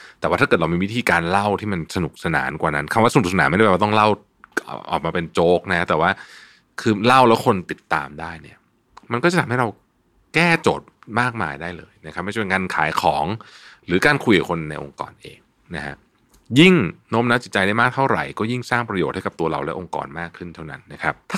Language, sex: Thai, male